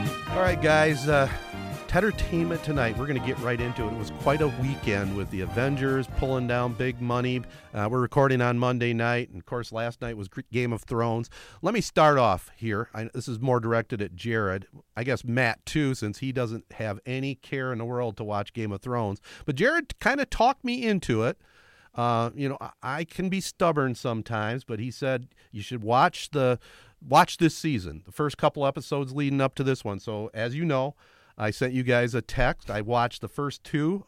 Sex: male